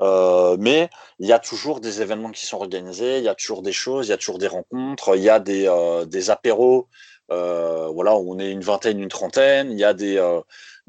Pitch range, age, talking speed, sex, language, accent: 90-120 Hz, 30-49, 240 wpm, male, French, French